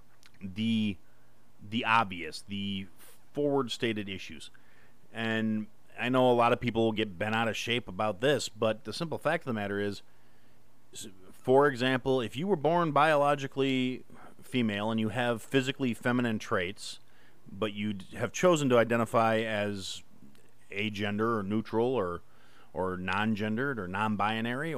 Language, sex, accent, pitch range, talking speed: English, male, American, 100-130 Hz, 140 wpm